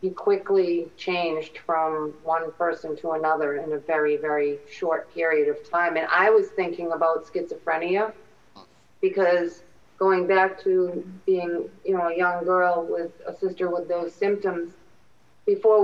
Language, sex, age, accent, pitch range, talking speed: English, female, 40-59, American, 175-200 Hz, 150 wpm